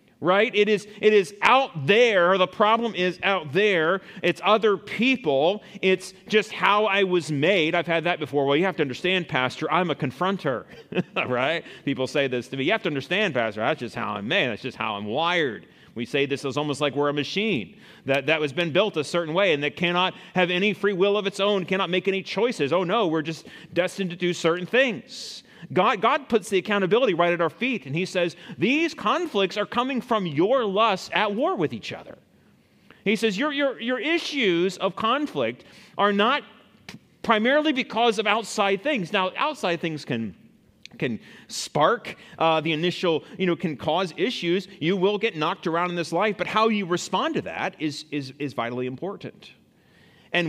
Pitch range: 155-210 Hz